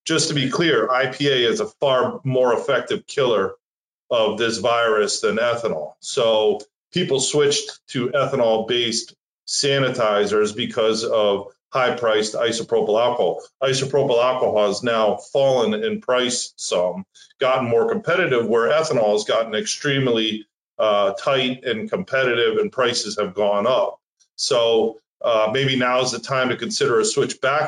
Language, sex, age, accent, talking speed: English, male, 40-59, American, 140 wpm